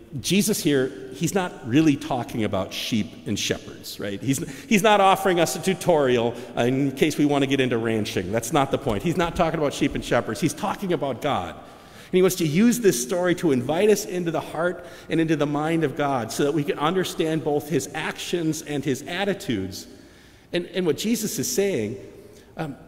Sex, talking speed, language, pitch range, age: male, 205 wpm, English, 120-185 Hz, 50-69